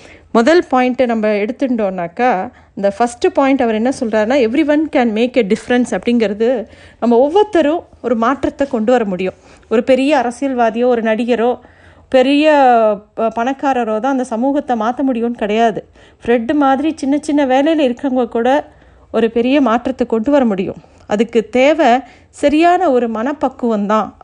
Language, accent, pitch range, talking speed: Tamil, native, 225-275 Hz, 135 wpm